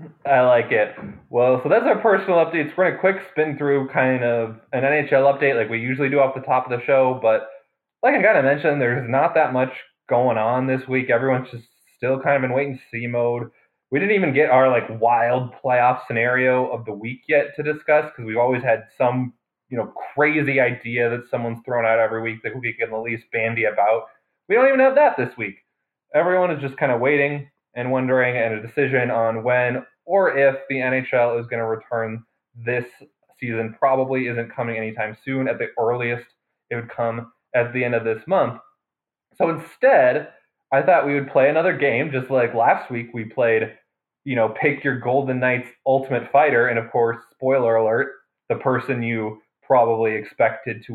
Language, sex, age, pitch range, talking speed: English, male, 20-39, 115-140 Hz, 205 wpm